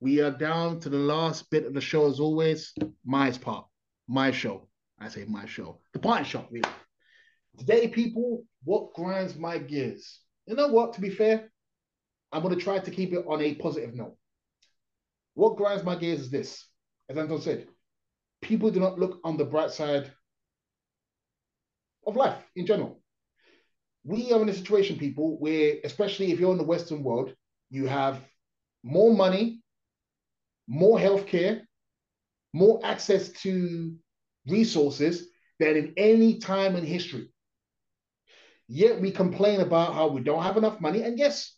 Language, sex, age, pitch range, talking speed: English, male, 30-49, 145-200 Hz, 160 wpm